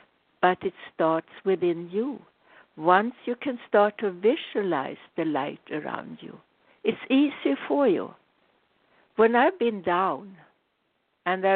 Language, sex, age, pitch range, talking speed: English, female, 60-79, 180-255 Hz, 130 wpm